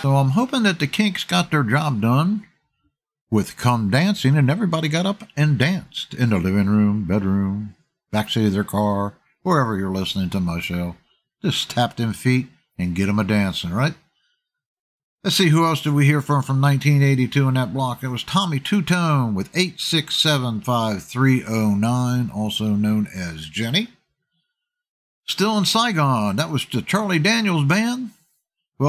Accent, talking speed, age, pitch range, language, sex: American, 160 wpm, 60-79, 120-175 Hz, English, male